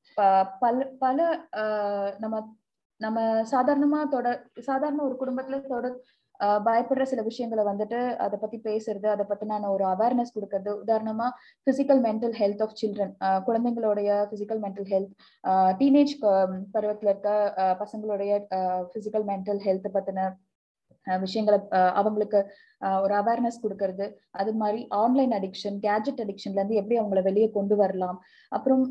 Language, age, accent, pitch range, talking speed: Tamil, 20-39, native, 200-245 Hz, 100 wpm